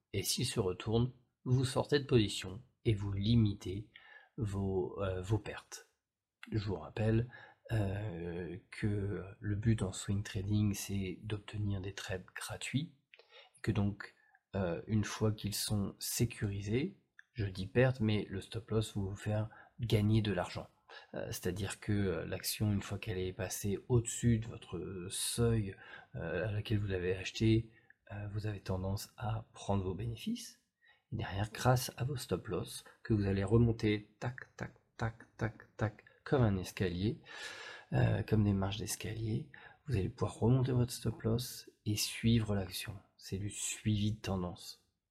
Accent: French